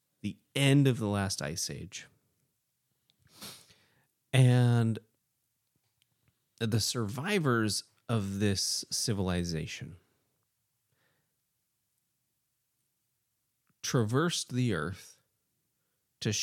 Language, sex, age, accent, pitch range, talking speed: English, male, 30-49, American, 105-130 Hz, 60 wpm